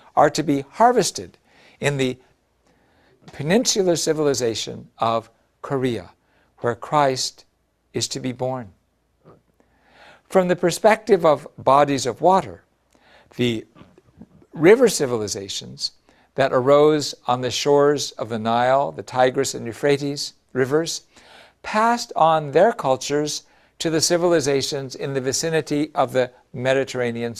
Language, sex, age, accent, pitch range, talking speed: English, male, 60-79, American, 125-155 Hz, 115 wpm